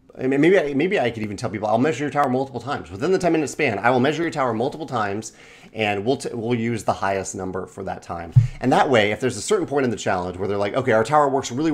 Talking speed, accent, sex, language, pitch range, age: 285 wpm, American, male, English, 105-135 Hz, 30-49